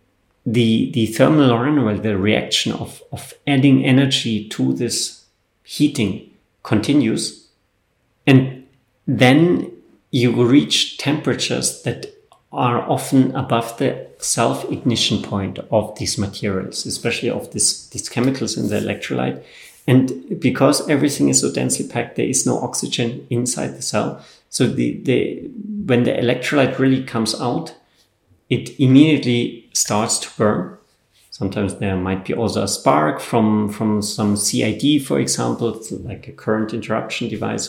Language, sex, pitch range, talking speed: English, male, 105-130 Hz, 130 wpm